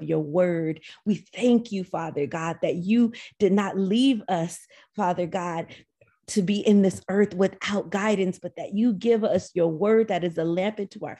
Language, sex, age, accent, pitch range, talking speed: English, female, 30-49, American, 165-205 Hz, 190 wpm